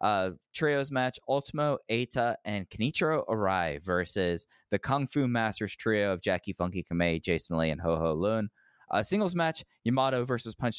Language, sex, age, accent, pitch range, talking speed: English, male, 20-39, American, 90-120 Hz, 180 wpm